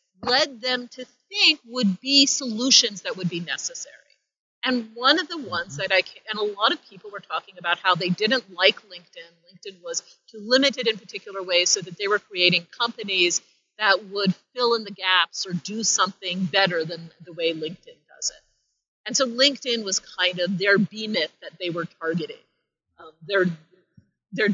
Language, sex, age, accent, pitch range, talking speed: English, female, 40-59, American, 190-245 Hz, 185 wpm